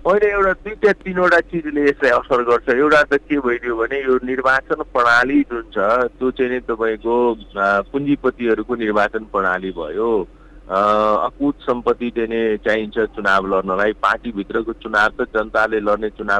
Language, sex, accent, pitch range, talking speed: English, male, Indian, 105-130 Hz, 50 wpm